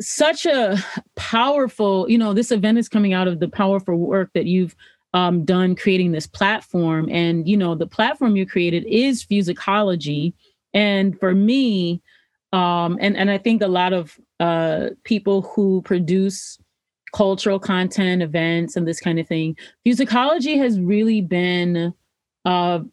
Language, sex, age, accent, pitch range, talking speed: English, female, 30-49, American, 180-215 Hz, 150 wpm